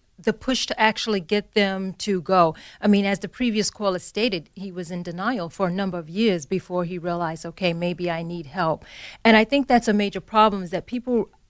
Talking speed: 220 wpm